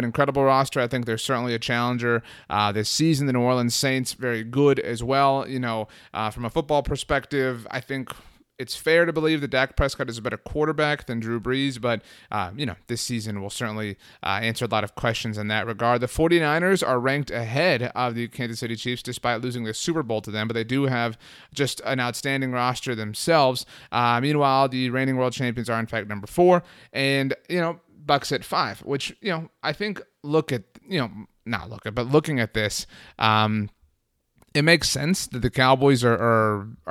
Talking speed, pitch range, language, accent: 205 wpm, 115-140 Hz, English, American